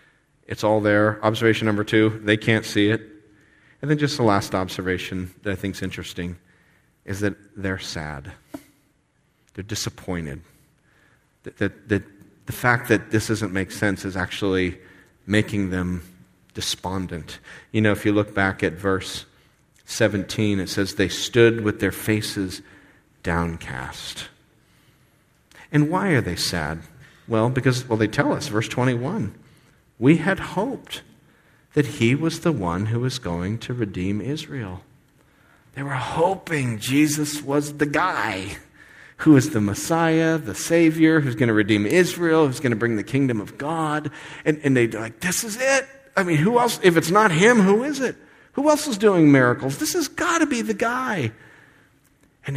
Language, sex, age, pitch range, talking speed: English, male, 40-59, 100-160 Hz, 165 wpm